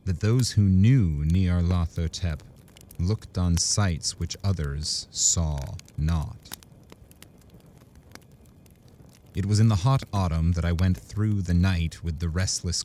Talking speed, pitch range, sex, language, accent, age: 130 wpm, 85-100 Hz, male, English, American, 30-49